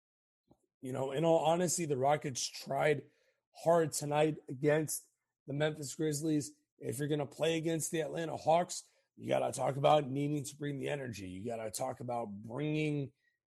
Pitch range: 135-165 Hz